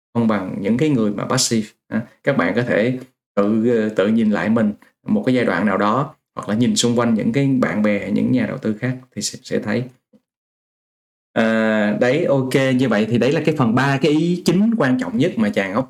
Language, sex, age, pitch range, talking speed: Vietnamese, male, 20-39, 115-140 Hz, 225 wpm